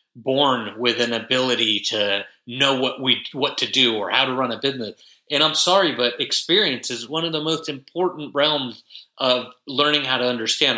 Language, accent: English, American